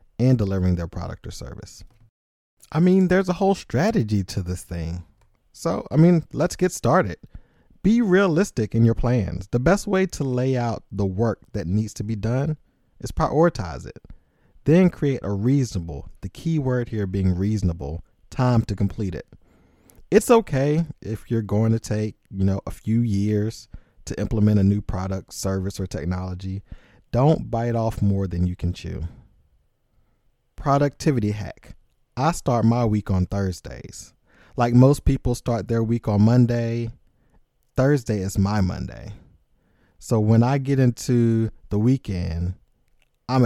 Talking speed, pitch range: 155 wpm, 95-125 Hz